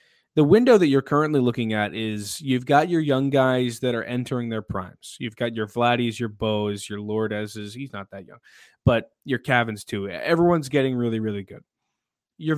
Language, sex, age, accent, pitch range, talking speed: English, male, 20-39, American, 115-155 Hz, 190 wpm